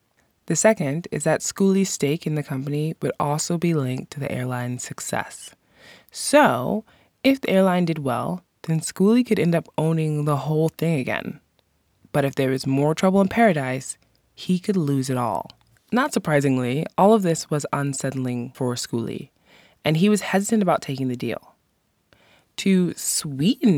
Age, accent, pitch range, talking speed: 20-39, American, 135-180 Hz, 165 wpm